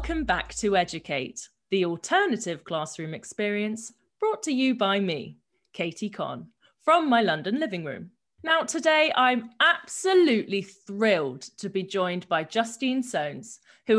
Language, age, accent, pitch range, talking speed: English, 20-39, British, 185-265 Hz, 135 wpm